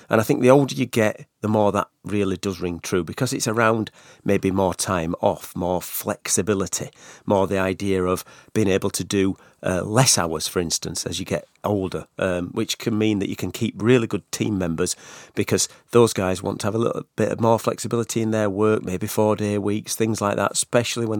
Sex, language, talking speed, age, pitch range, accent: male, English, 210 wpm, 40-59, 100-120 Hz, British